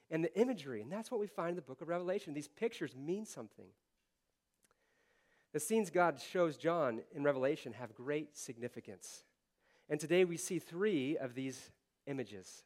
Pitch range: 135-195 Hz